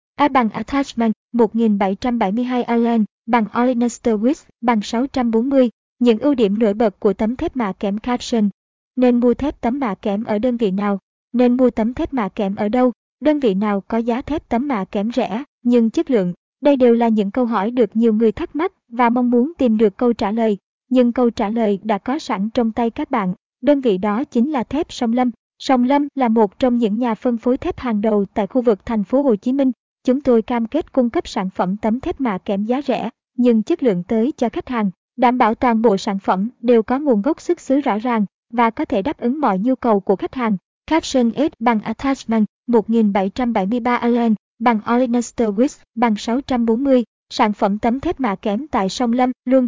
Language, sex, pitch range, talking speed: Vietnamese, male, 220-255 Hz, 215 wpm